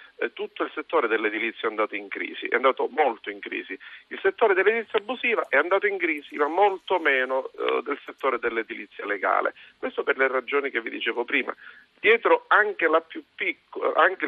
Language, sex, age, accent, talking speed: Italian, male, 50-69, native, 165 wpm